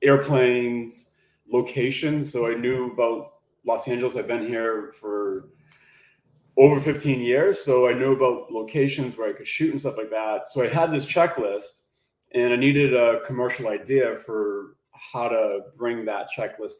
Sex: male